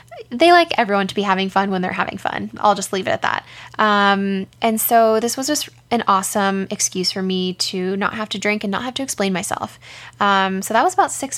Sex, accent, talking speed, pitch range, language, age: female, American, 235 wpm, 190-225 Hz, English, 10-29